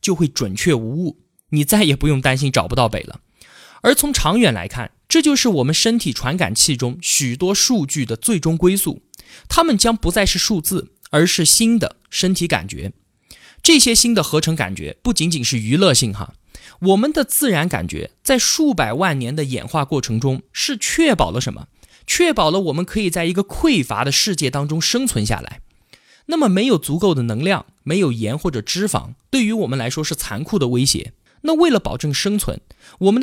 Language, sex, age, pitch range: Chinese, male, 20-39, 140-225 Hz